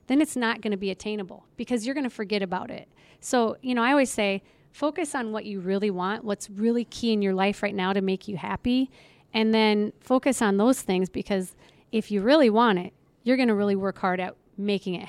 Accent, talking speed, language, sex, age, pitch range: American, 235 wpm, English, female, 40-59, 195-245 Hz